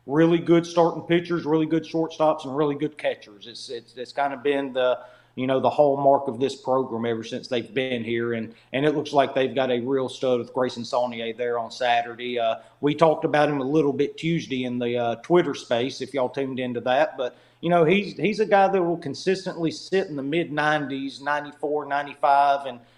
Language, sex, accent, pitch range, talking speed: English, male, American, 125-150 Hz, 215 wpm